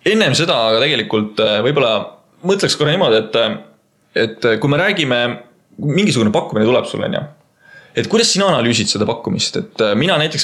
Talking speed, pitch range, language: 155 wpm, 110-140 Hz, English